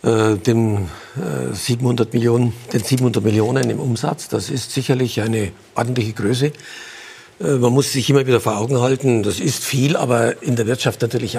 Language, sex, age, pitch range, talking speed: German, male, 60-79, 115-135 Hz, 175 wpm